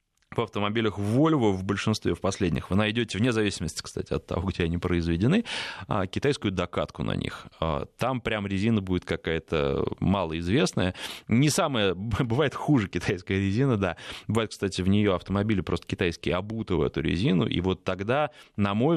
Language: Russian